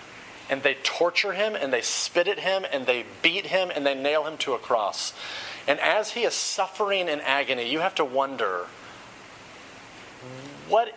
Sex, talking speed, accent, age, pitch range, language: male, 175 wpm, American, 30-49, 140-195 Hz, English